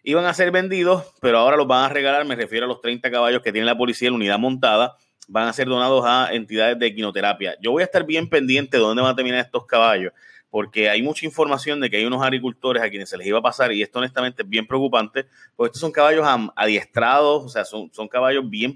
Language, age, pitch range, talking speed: Spanish, 30-49, 110-135 Hz, 245 wpm